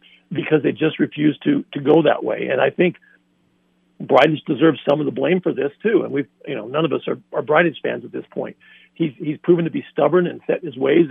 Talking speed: 250 wpm